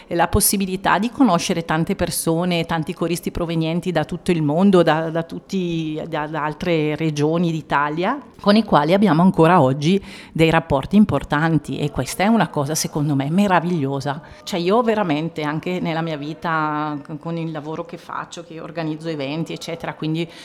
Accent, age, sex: native, 40-59, female